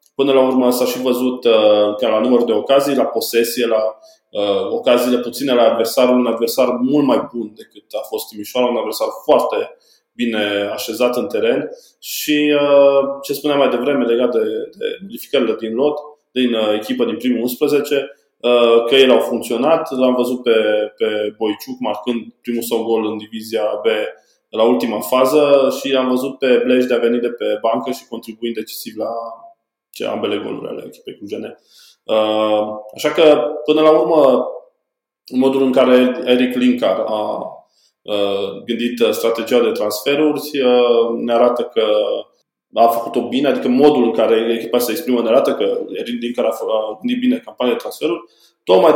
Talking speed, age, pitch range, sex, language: 165 wpm, 20-39, 115-150 Hz, male, Romanian